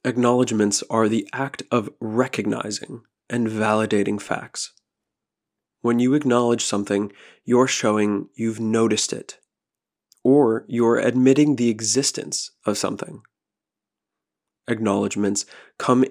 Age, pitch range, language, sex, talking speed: 20-39, 105-125 Hz, English, male, 100 wpm